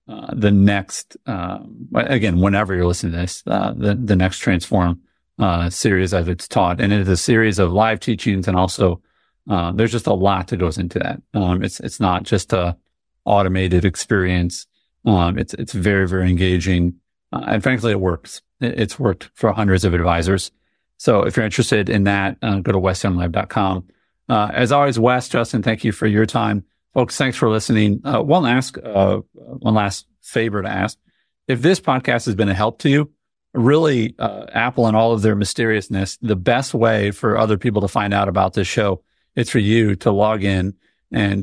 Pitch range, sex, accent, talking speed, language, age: 95-115 Hz, male, American, 195 wpm, English, 40-59